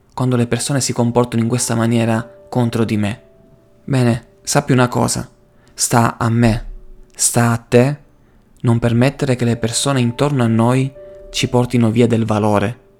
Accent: native